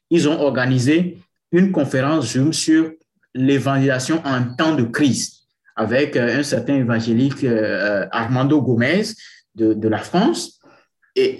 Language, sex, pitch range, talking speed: English, male, 125-175 Hz, 115 wpm